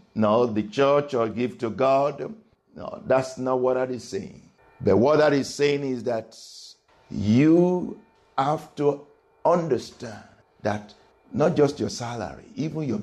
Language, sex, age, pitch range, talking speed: English, male, 60-79, 120-170 Hz, 145 wpm